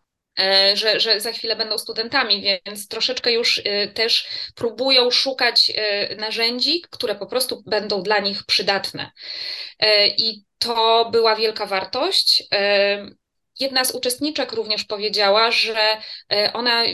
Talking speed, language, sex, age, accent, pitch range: 115 wpm, Polish, female, 20-39, native, 195-230 Hz